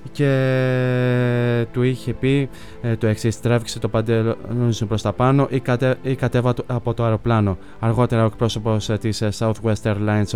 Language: Greek